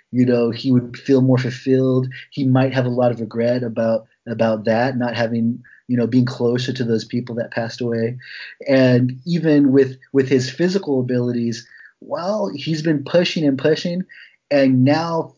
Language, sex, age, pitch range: English, male, 30-49, 120-145 Hz